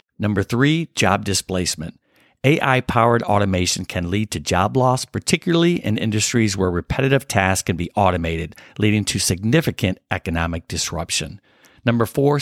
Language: English